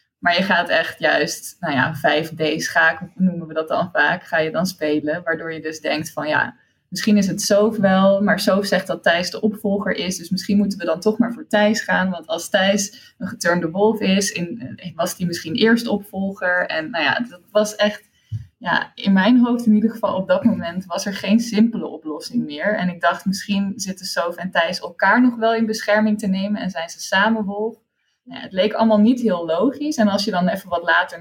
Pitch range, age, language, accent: 165-210 Hz, 20-39, Dutch, Dutch